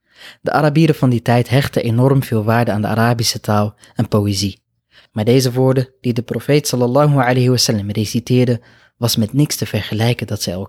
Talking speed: 185 wpm